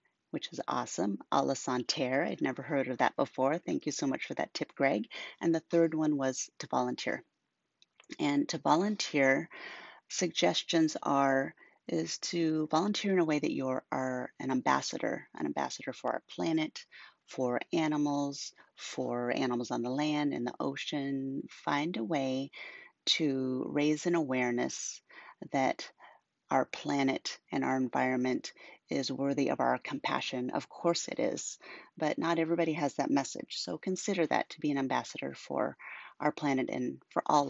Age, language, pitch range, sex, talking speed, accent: 40-59, English, 130-165 Hz, female, 160 wpm, American